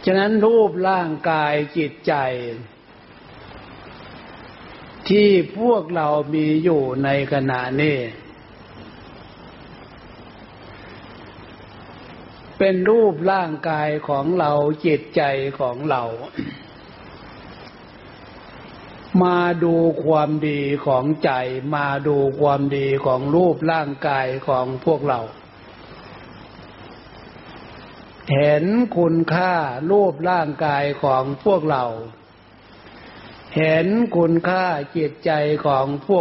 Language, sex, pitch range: Thai, male, 130-170 Hz